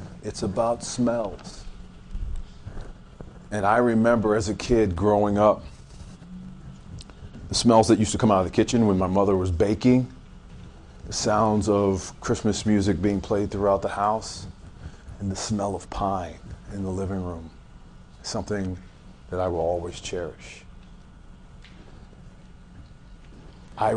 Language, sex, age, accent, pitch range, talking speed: English, male, 40-59, American, 90-110 Hz, 130 wpm